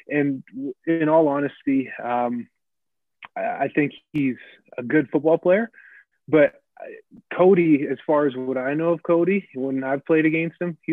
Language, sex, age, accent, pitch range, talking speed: English, male, 20-39, American, 125-150 Hz, 155 wpm